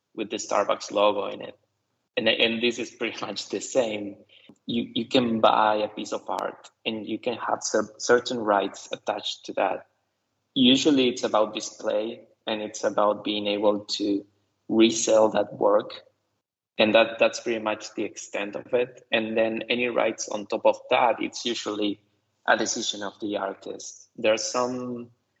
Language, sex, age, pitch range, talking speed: English, male, 20-39, 105-120 Hz, 170 wpm